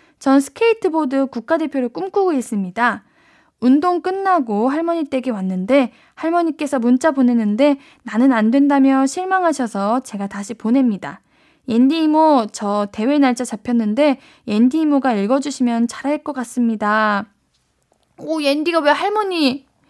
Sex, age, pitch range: female, 10-29, 230-320 Hz